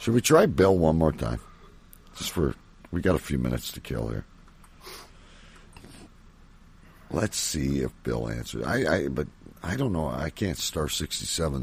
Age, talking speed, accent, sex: 60-79, 165 wpm, American, male